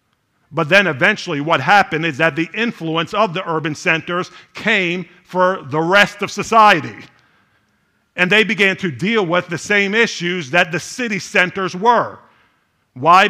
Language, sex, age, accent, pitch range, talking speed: English, male, 50-69, American, 120-160 Hz, 155 wpm